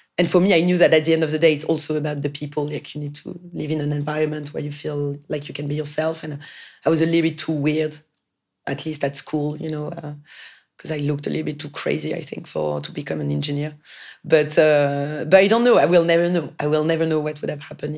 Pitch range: 145-160 Hz